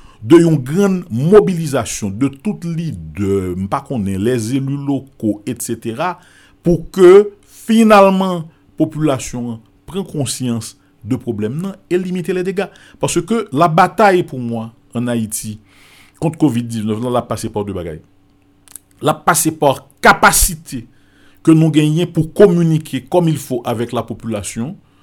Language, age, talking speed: French, 50-69, 130 wpm